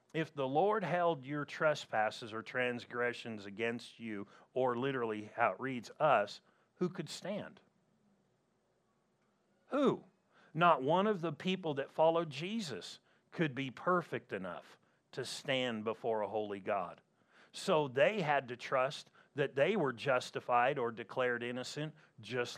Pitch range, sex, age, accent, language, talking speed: 125-165 Hz, male, 50-69, American, English, 135 wpm